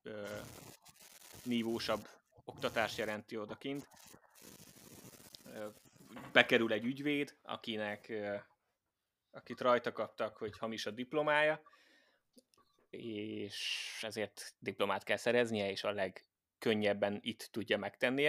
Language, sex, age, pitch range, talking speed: Hungarian, male, 20-39, 110-130 Hz, 85 wpm